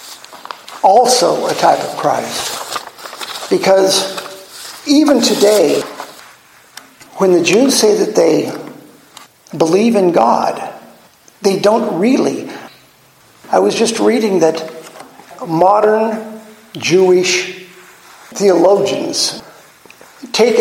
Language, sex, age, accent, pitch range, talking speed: English, male, 50-69, American, 170-215 Hz, 80 wpm